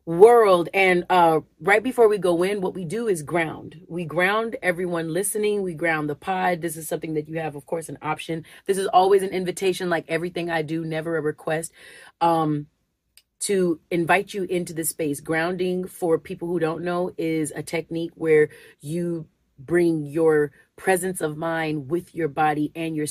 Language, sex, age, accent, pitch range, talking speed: English, female, 30-49, American, 150-180 Hz, 185 wpm